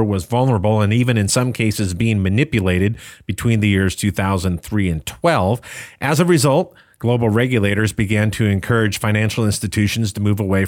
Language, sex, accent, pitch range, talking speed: English, male, American, 95-115 Hz, 155 wpm